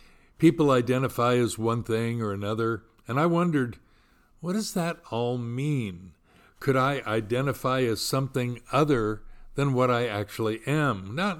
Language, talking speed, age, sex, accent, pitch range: English, 140 wpm, 60-79, male, American, 110-135 Hz